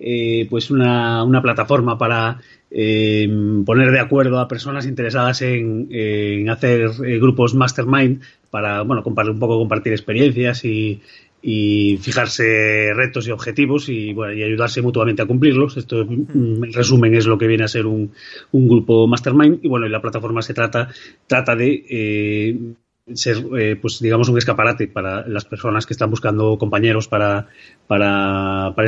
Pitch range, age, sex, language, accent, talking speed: 105-125 Hz, 30-49, male, Spanish, Spanish, 160 wpm